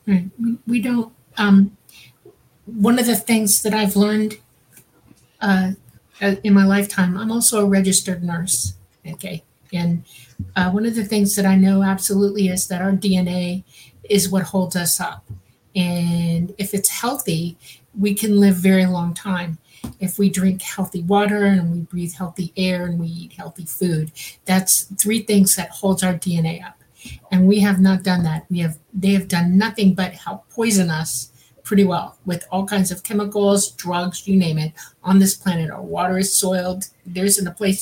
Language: English